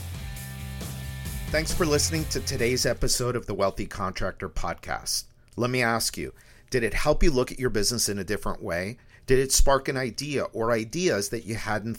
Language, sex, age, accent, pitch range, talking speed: English, male, 50-69, American, 100-135 Hz, 185 wpm